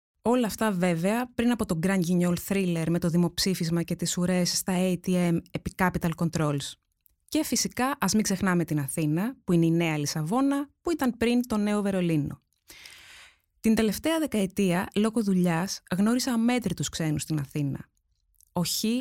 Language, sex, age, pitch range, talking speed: Greek, female, 20-39, 175-230 Hz, 160 wpm